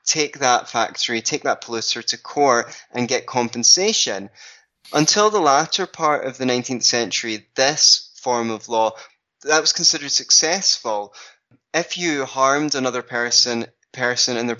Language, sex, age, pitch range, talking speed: English, male, 20-39, 120-145 Hz, 145 wpm